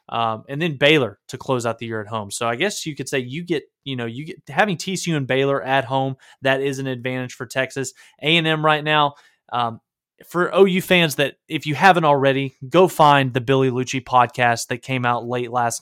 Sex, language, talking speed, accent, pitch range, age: male, English, 220 wpm, American, 120-150 Hz, 20-39